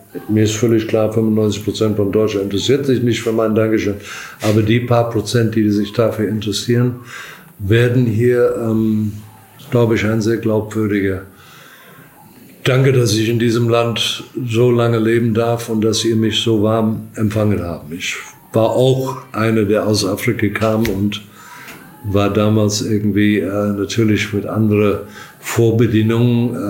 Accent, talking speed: German, 145 wpm